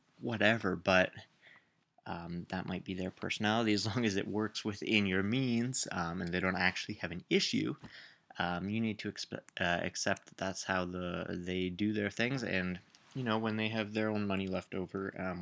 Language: English